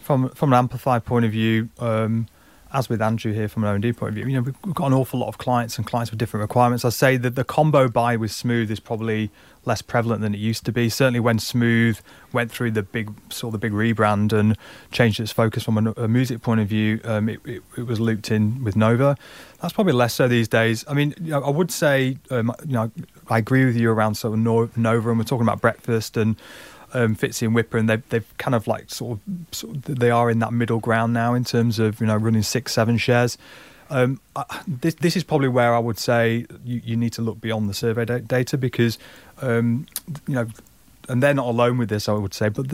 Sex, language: male, English